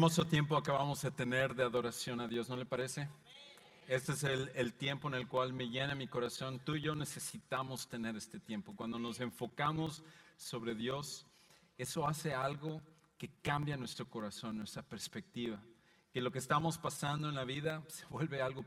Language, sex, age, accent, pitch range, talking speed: English, male, 40-59, Mexican, 120-150 Hz, 185 wpm